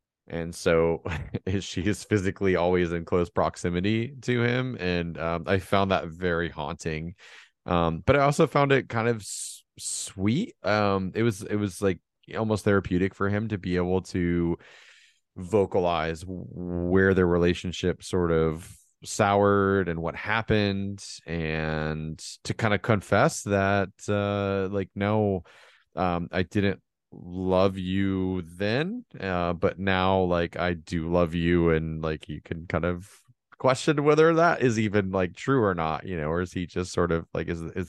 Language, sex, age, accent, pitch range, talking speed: English, male, 30-49, American, 85-100 Hz, 160 wpm